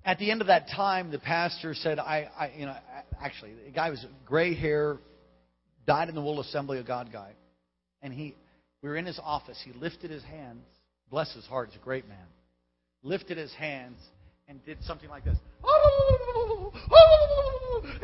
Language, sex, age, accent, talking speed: English, male, 40-59, American, 180 wpm